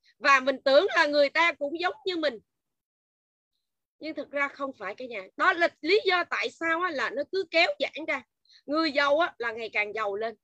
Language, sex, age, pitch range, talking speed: Vietnamese, female, 20-39, 225-315 Hz, 220 wpm